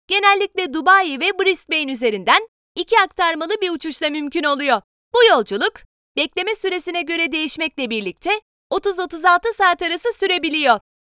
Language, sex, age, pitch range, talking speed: Turkish, female, 30-49, 310-385 Hz, 120 wpm